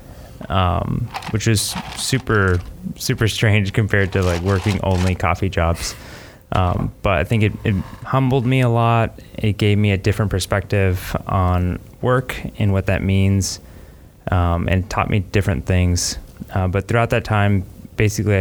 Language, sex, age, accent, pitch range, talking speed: English, male, 20-39, American, 90-105 Hz, 155 wpm